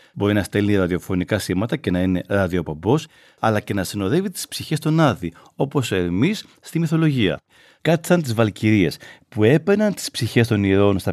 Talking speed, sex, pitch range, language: 175 wpm, male, 100-160 Hz, Greek